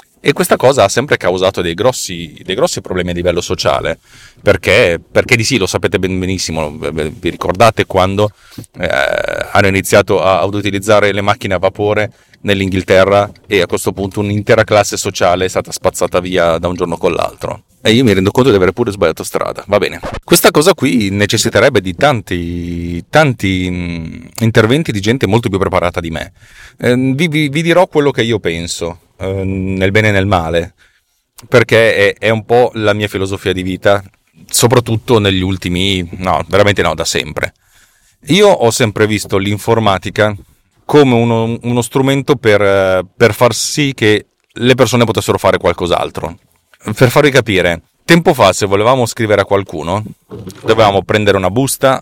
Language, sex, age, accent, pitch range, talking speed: Italian, male, 30-49, native, 95-120 Hz, 165 wpm